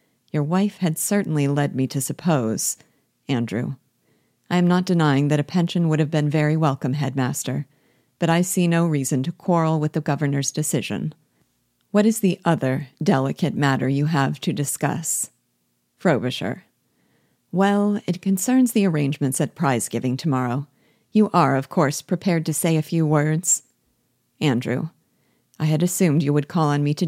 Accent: American